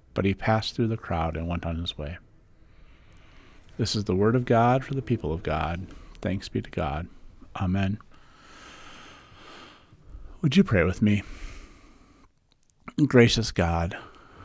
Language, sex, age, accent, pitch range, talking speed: English, male, 50-69, American, 95-115 Hz, 140 wpm